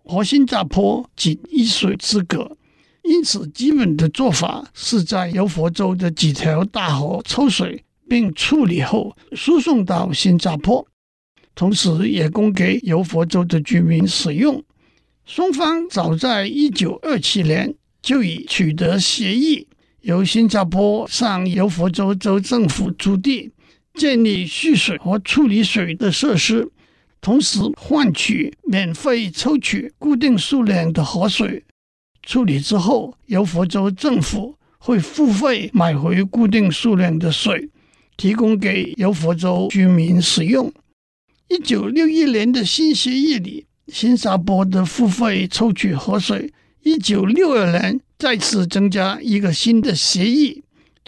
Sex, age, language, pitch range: male, 60-79, Chinese, 180-255 Hz